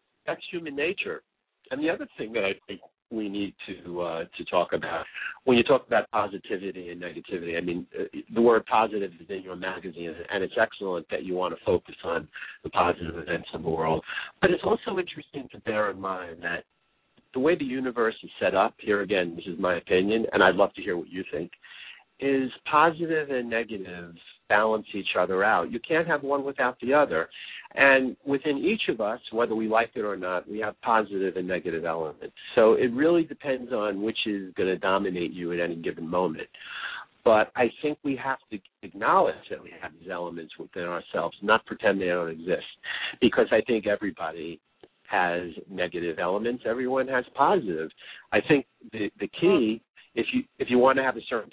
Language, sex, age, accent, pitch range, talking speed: English, male, 50-69, American, 90-130 Hz, 200 wpm